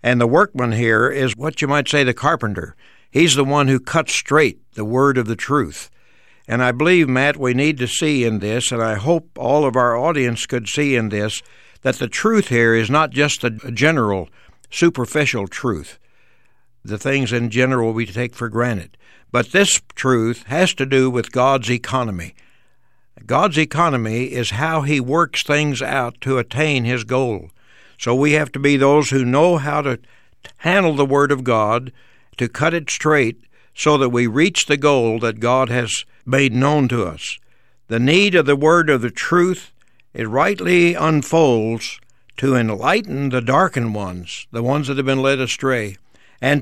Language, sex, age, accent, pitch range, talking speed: English, male, 60-79, American, 120-145 Hz, 180 wpm